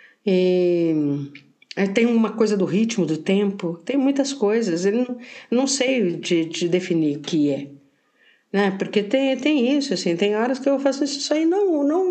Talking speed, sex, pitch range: 185 wpm, female, 175-255 Hz